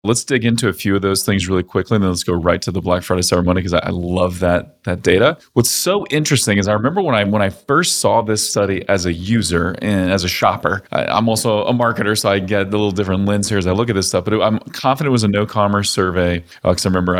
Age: 30-49